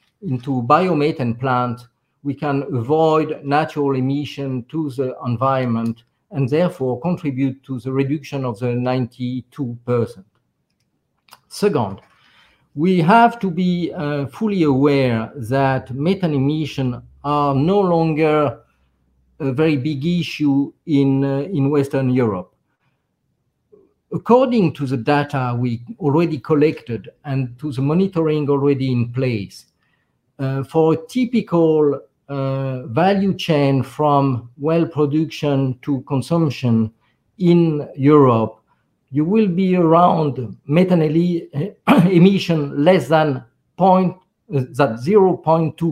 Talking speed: 105 wpm